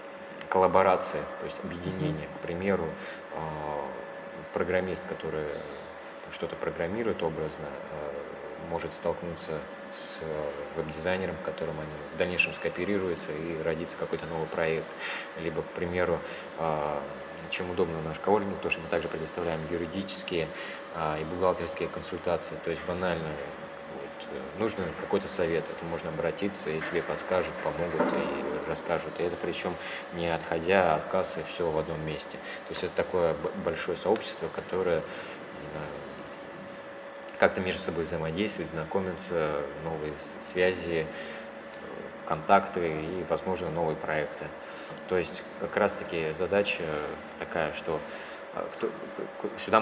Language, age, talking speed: Russian, 20-39, 115 wpm